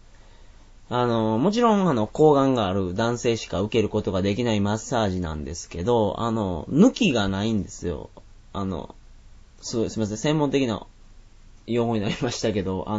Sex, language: male, Japanese